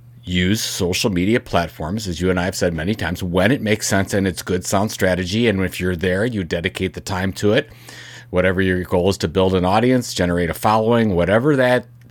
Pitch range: 90-115 Hz